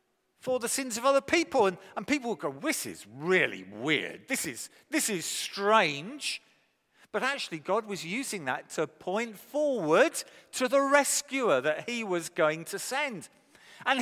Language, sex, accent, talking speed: English, male, British, 165 wpm